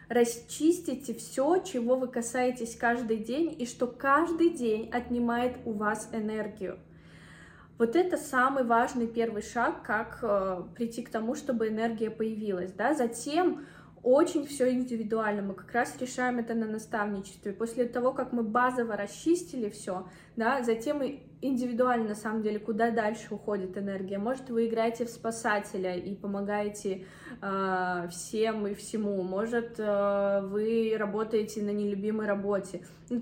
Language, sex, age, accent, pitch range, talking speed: Russian, female, 20-39, native, 205-245 Hz, 135 wpm